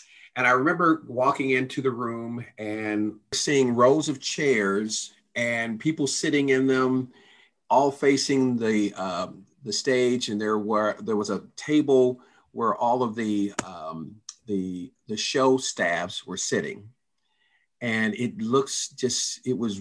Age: 50-69